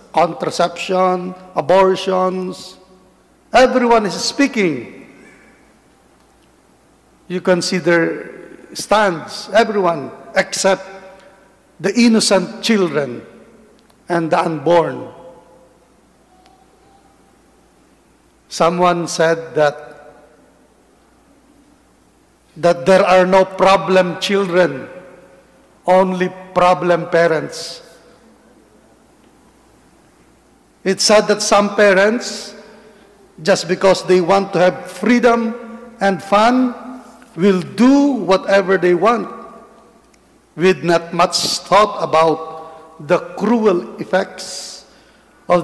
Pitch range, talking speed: 170-210 Hz, 75 wpm